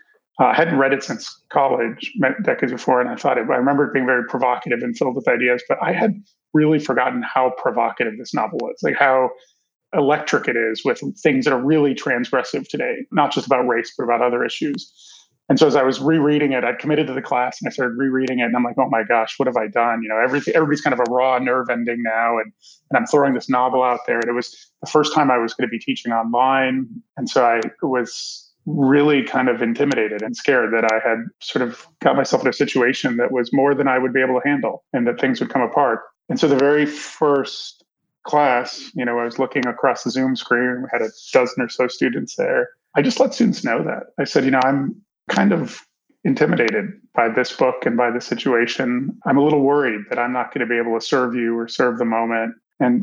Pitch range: 120-150 Hz